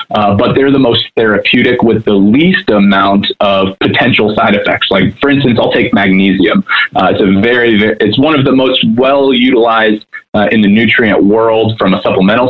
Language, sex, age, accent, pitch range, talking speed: English, male, 20-39, American, 100-125 Hz, 190 wpm